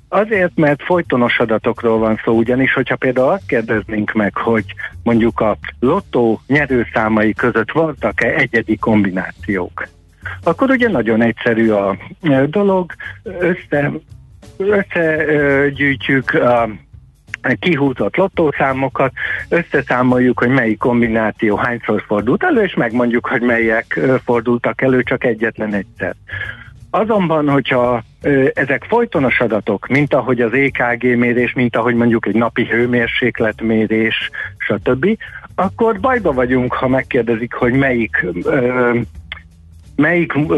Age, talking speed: 60-79, 110 wpm